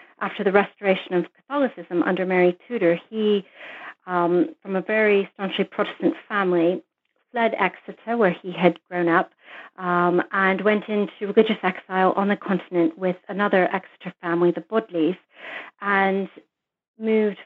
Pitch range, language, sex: 180-220 Hz, English, female